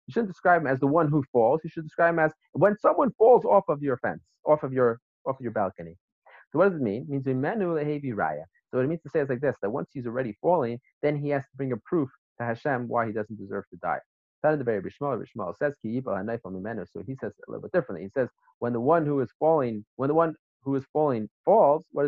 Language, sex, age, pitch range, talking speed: English, male, 30-49, 115-160 Hz, 260 wpm